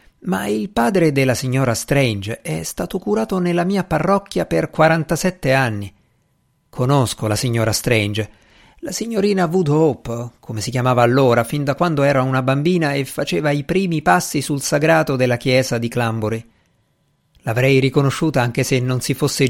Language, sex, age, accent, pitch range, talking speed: Italian, male, 50-69, native, 120-165 Hz, 155 wpm